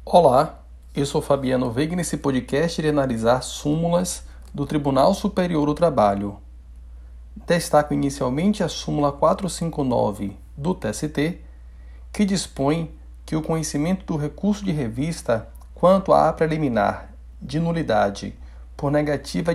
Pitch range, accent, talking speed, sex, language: 115-165 Hz, Brazilian, 115 wpm, male, Portuguese